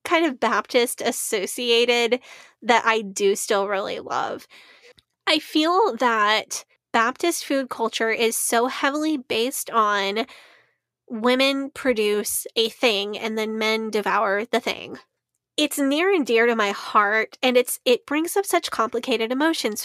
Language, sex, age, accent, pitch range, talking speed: English, female, 10-29, American, 220-280 Hz, 140 wpm